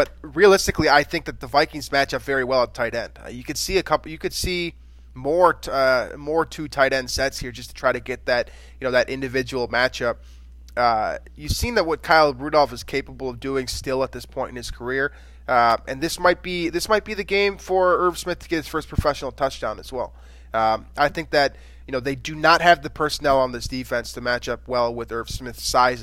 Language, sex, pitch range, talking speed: English, male, 120-155 Hz, 240 wpm